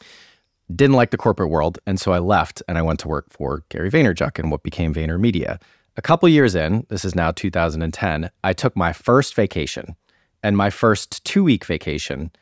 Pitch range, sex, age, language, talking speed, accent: 85-110 Hz, male, 30-49, English, 195 wpm, American